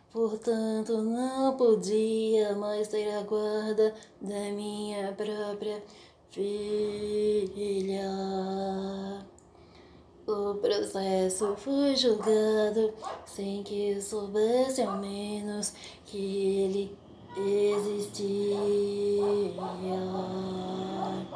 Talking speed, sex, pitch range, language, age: 65 wpm, female, 195-230 Hz, Portuguese, 20-39